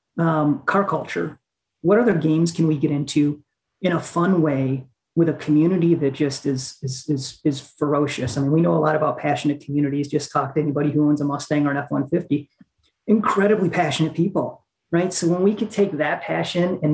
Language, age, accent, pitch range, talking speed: English, 30-49, American, 145-170 Hz, 200 wpm